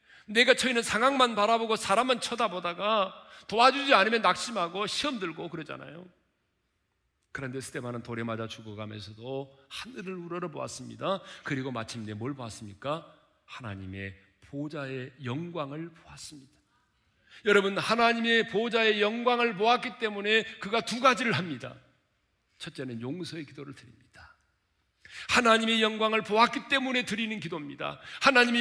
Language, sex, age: Korean, male, 40-59